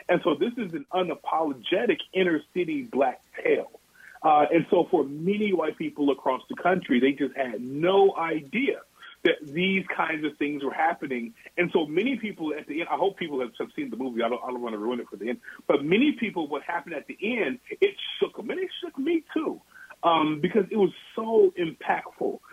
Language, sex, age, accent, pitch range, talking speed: English, male, 30-49, American, 140-210 Hz, 210 wpm